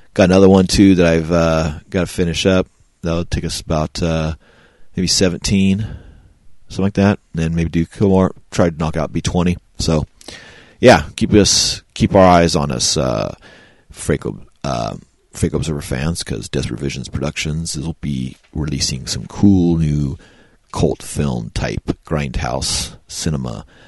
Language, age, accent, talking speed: English, 40-59, American, 155 wpm